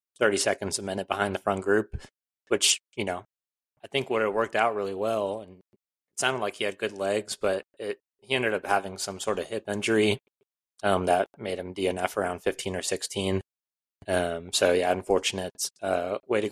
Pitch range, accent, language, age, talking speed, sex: 90-100 Hz, American, English, 20-39, 195 wpm, male